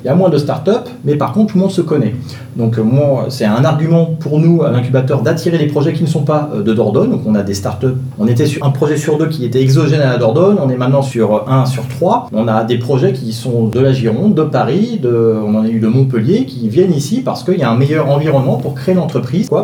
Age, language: 30-49, French